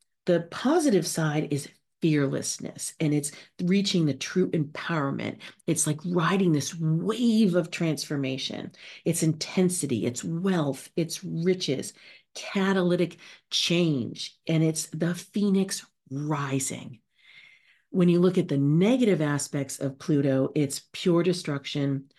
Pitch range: 140-175 Hz